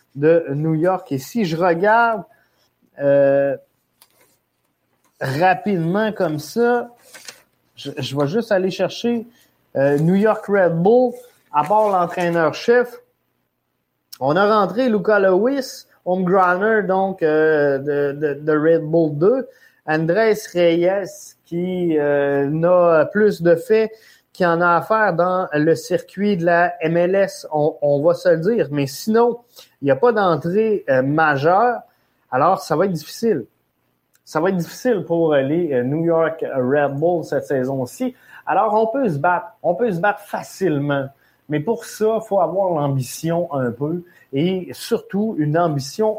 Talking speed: 145 wpm